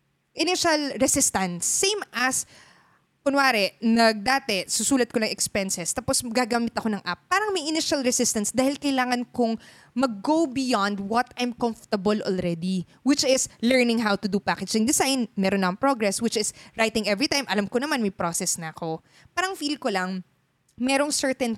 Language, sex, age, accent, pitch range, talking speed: Filipino, female, 20-39, native, 200-270 Hz, 160 wpm